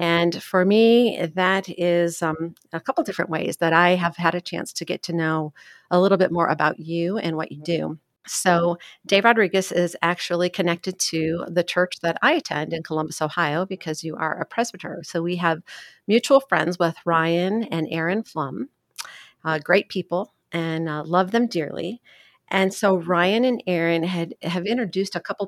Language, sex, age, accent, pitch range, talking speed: English, female, 50-69, American, 165-195 Hz, 180 wpm